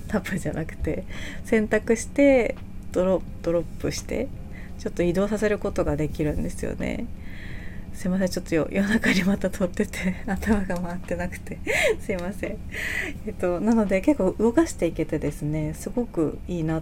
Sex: female